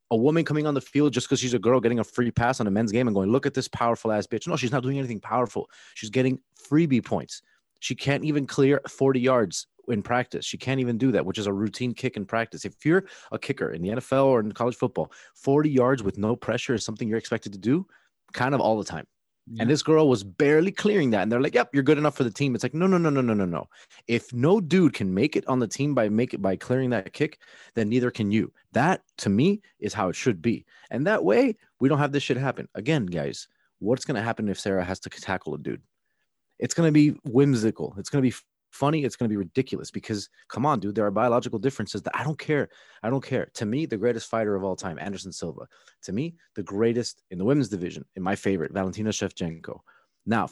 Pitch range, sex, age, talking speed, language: 110-140 Hz, male, 30-49, 255 wpm, English